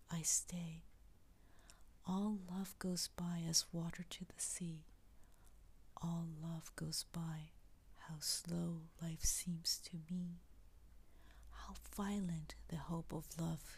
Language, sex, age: Japanese, female, 40-59